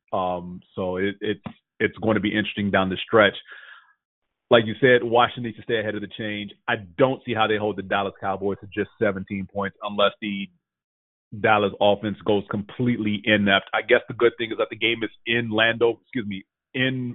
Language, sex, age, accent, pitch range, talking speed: English, male, 30-49, American, 105-125 Hz, 205 wpm